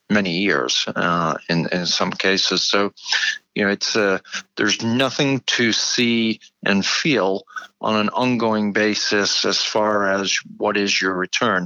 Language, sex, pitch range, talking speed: English, male, 100-110 Hz, 150 wpm